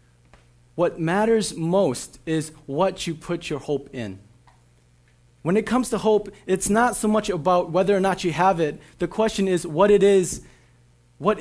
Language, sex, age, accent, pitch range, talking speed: English, male, 30-49, American, 120-195 Hz, 175 wpm